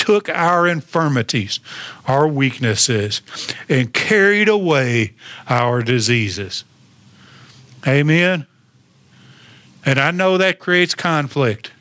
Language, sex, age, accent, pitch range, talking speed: English, male, 50-69, American, 135-205 Hz, 85 wpm